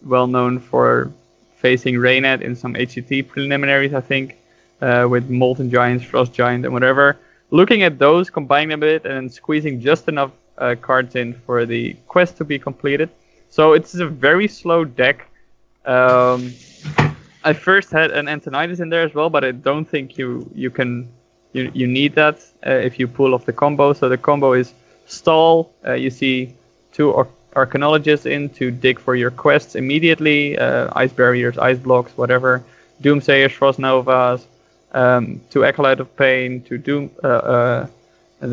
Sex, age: male, 20-39